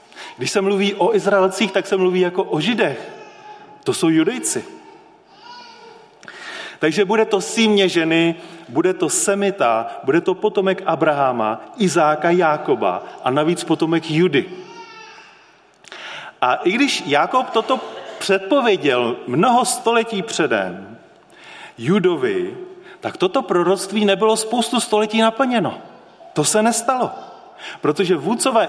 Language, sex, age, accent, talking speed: Czech, male, 40-59, native, 115 wpm